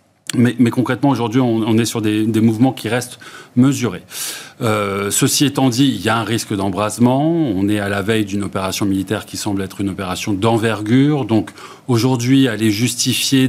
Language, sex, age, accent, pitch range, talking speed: French, male, 30-49, French, 110-135 Hz, 185 wpm